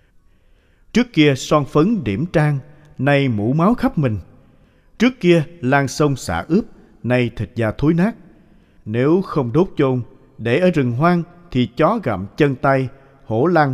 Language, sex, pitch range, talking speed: Vietnamese, male, 110-155 Hz, 160 wpm